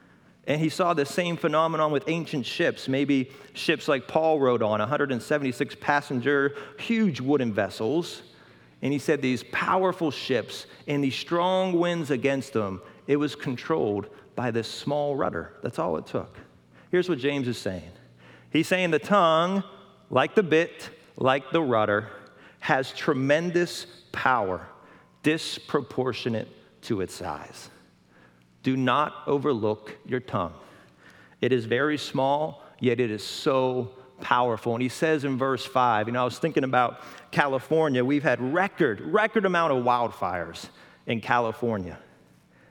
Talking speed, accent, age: 140 wpm, American, 40-59